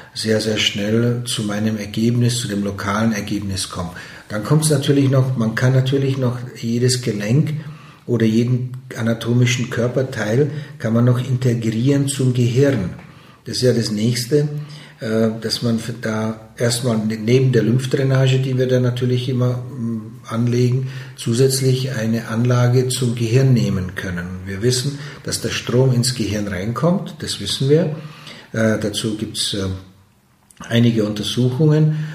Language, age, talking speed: German, 50-69, 135 wpm